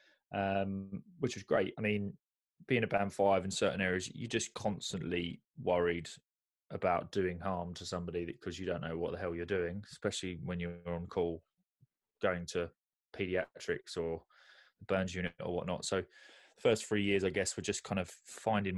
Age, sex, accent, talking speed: 20-39, male, British, 180 wpm